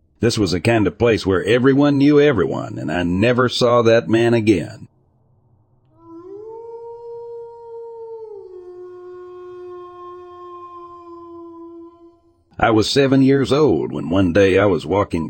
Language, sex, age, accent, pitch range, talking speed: English, male, 60-79, American, 95-145 Hz, 110 wpm